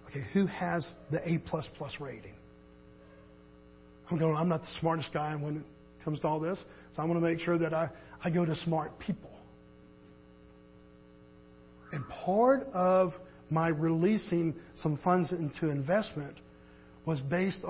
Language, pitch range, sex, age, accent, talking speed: English, 135-185 Hz, male, 50-69, American, 140 wpm